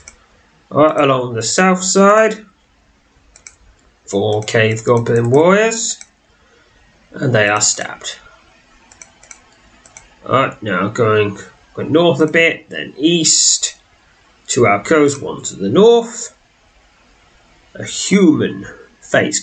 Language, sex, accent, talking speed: English, male, British, 105 wpm